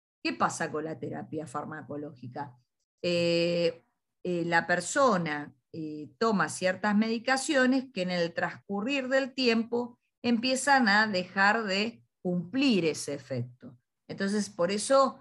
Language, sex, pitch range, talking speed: Spanish, female, 165-230 Hz, 120 wpm